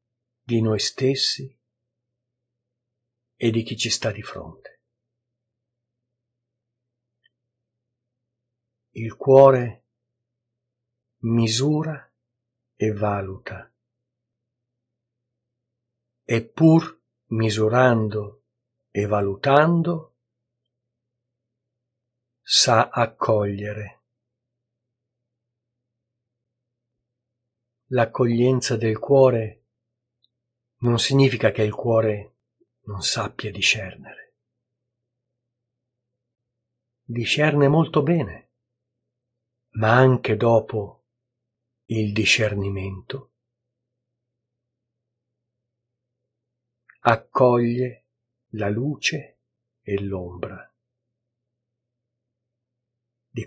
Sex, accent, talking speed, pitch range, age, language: male, native, 55 wpm, 115-125 Hz, 50-69, Italian